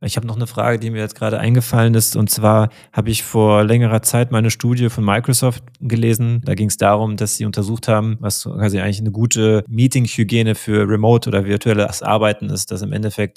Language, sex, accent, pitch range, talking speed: German, male, German, 105-120 Hz, 210 wpm